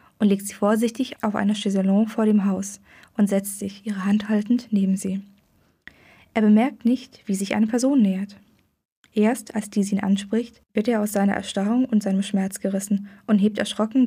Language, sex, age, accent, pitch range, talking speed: German, female, 20-39, German, 195-220 Hz, 185 wpm